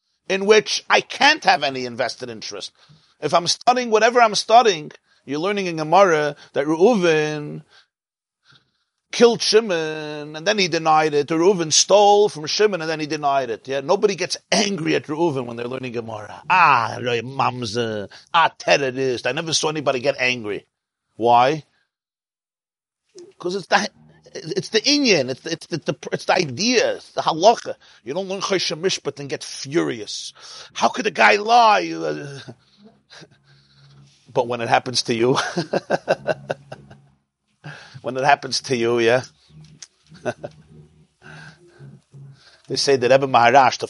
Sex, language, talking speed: male, English, 145 wpm